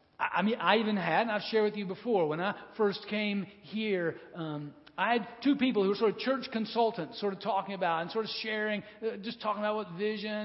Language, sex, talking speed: English, male, 235 wpm